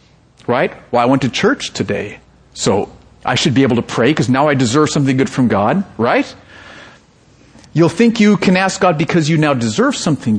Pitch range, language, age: 125-170 Hz, English, 50-69